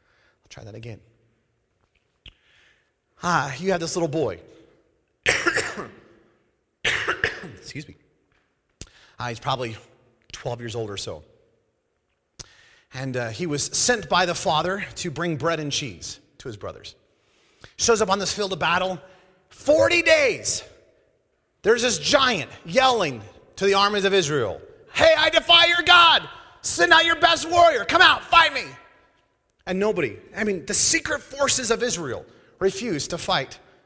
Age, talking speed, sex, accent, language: 30-49, 140 wpm, male, American, English